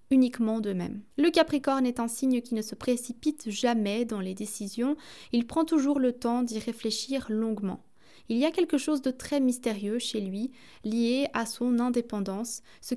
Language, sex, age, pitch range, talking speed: French, female, 20-39, 220-270 Hz, 175 wpm